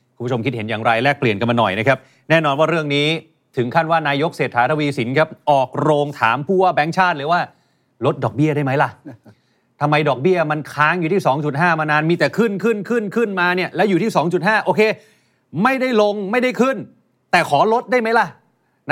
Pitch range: 130-175 Hz